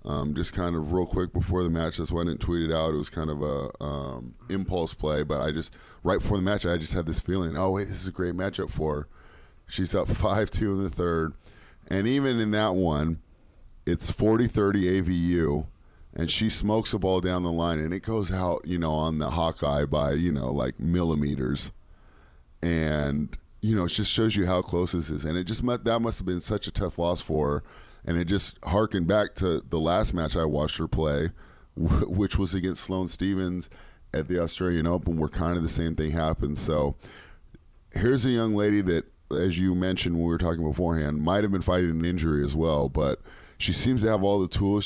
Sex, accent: male, American